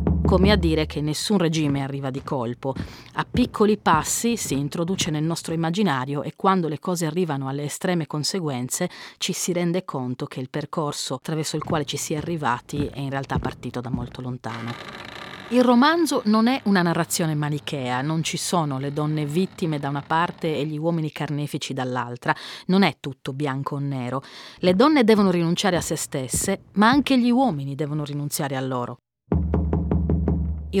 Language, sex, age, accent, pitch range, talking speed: Italian, female, 40-59, native, 140-190 Hz, 175 wpm